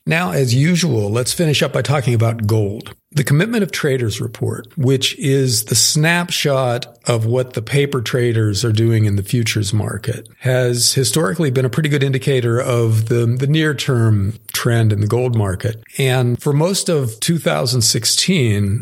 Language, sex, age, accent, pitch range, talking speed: English, male, 50-69, American, 115-140 Hz, 165 wpm